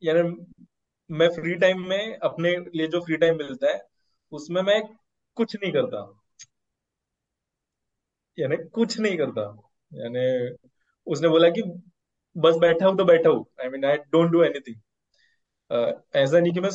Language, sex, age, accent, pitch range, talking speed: Hindi, male, 20-39, native, 150-180 Hz, 135 wpm